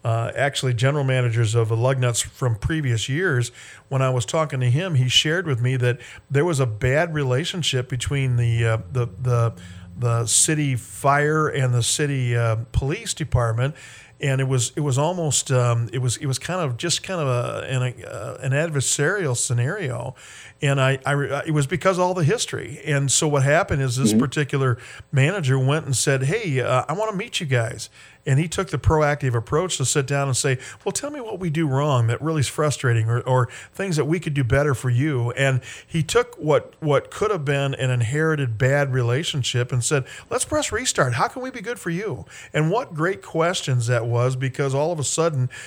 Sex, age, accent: male, 50-69, American